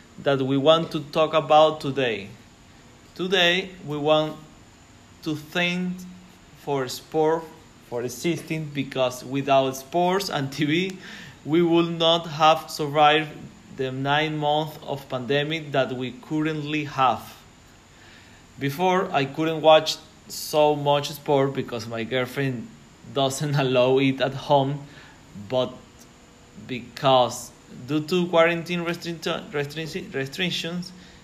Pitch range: 135-175 Hz